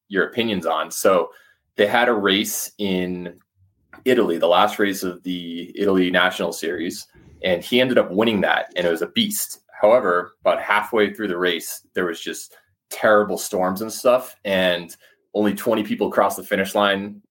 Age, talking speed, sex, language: 20-39, 175 wpm, male, English